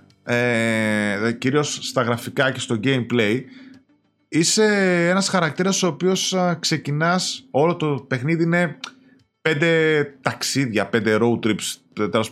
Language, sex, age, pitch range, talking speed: Greek, male, 20-39, 115-175 Hz, 110 wpm